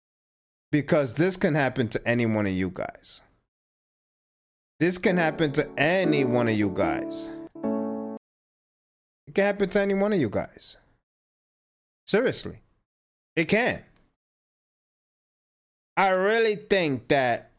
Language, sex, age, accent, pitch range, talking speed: English, male, 30-49, American, 100-155 Hz, 120 wpm